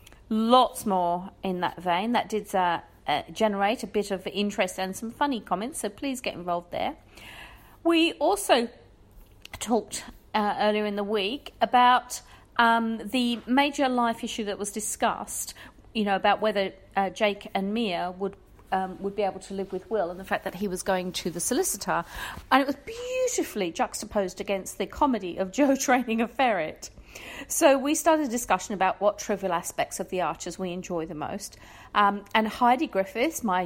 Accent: British